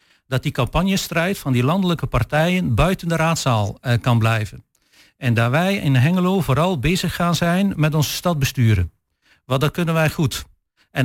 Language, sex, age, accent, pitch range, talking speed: Dutch, male, 50-69, Dutch, 130-180 Hz, 170 wpm